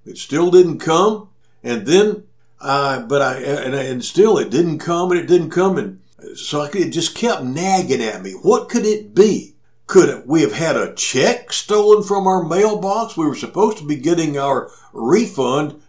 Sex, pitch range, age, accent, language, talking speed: male, 140-205 Hz, 60-79, American, English, 200 wpm